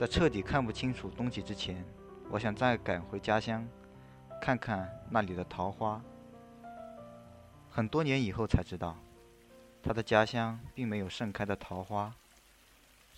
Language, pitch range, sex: Chinese, 90-120 Hz, male